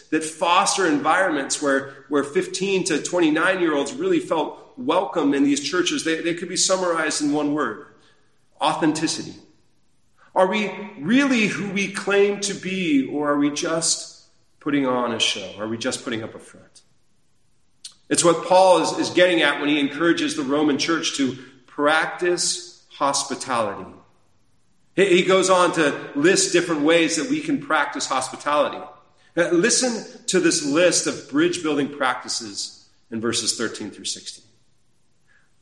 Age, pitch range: 40-59, 140-190 Hz